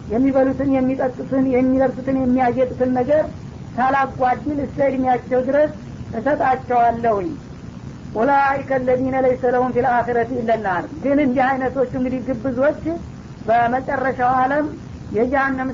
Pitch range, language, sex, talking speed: 250-265 Hz, Amharic, female, 105 wpm